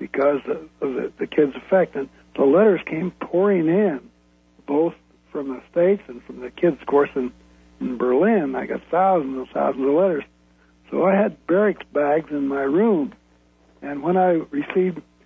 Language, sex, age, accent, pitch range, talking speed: English, male, 60-79, American, 125-185 Hz, 165 wpm